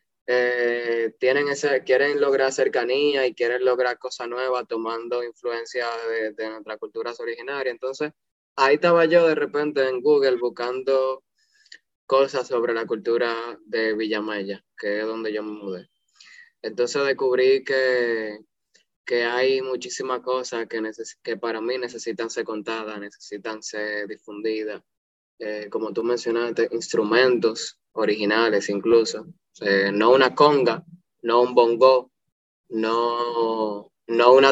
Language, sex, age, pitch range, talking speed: English, male, 20-39, 115-135 Hz, 125 wpm